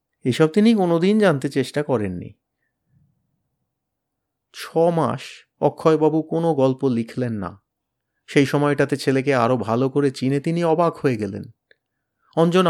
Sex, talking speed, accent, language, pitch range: male, 115 wpm, native, Bengali, 130-160 Hz